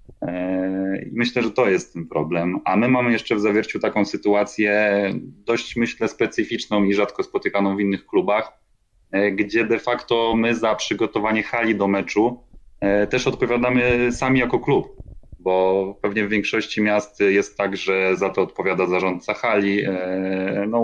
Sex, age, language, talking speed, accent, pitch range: male, 30-49, Polish, 150 wpm, native, 95-115 Hz